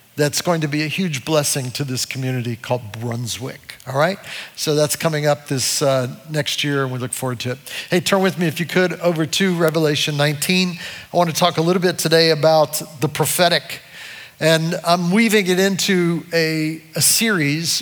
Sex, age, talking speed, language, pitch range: male, 50-69, 195 wpm, English, 140-170 Hz